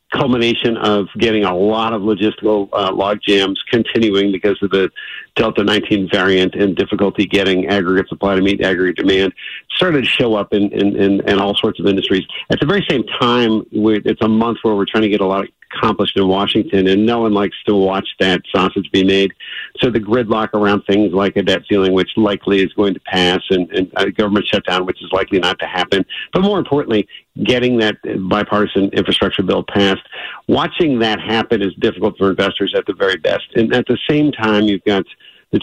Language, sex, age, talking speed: English, male, 50-69, 205 wpm